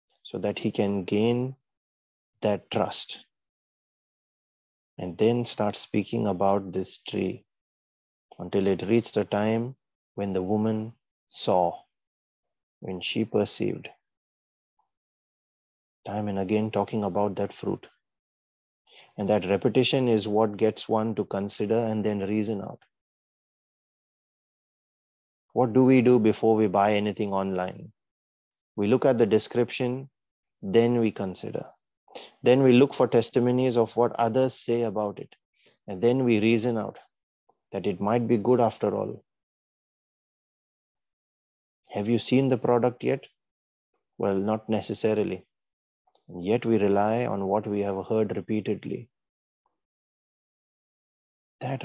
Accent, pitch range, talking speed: Indian, 100-115 Hz, 120 wpm